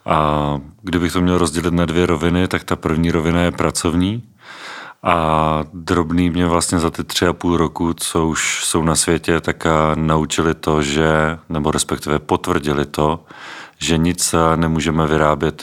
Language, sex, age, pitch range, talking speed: Czech, male, 40-59, 75-85 Hz, 155 wpm